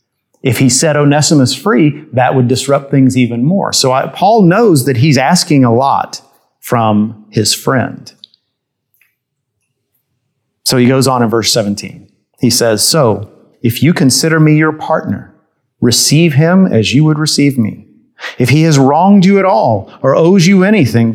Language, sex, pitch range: English, male, 125-160 Hz